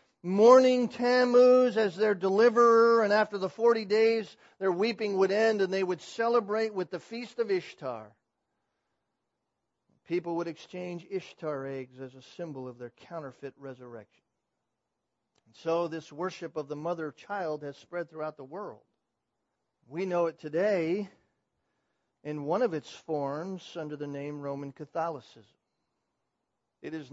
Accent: American